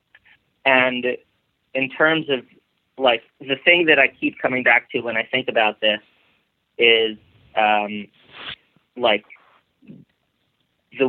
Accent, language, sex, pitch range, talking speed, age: American, English, male, 110-130 Hz, 120 wpm, 30-49